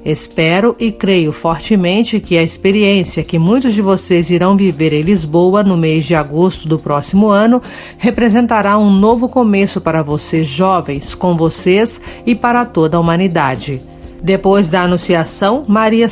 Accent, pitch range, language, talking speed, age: Brazilian, 165-205 Hz, Portuguese, 150 wpm, 50-69